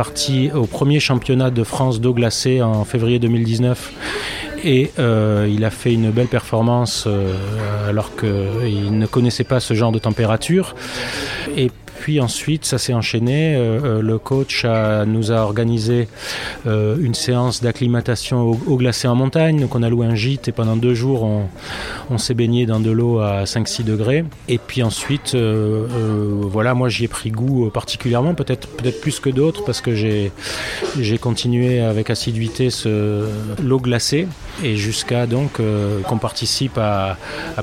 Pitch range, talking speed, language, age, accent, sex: 110-130 Hz, 170 wpm, French, 30-49, French, male